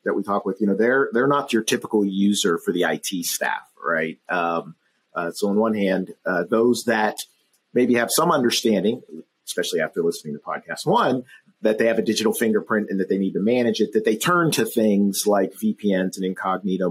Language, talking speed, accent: English, 205 wpm, American